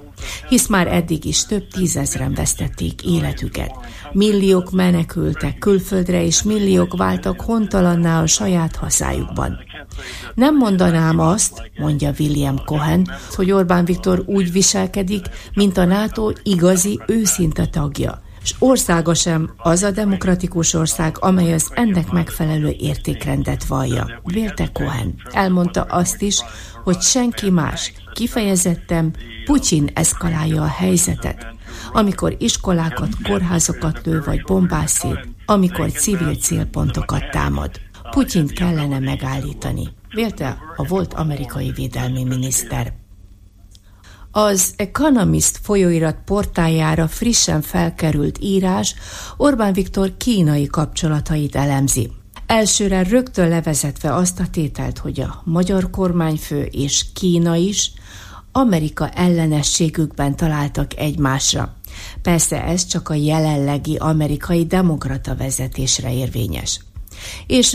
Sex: female